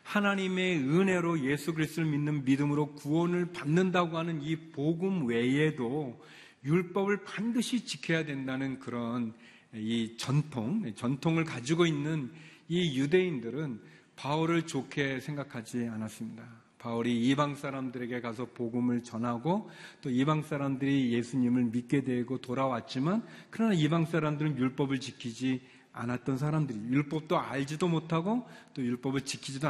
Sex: male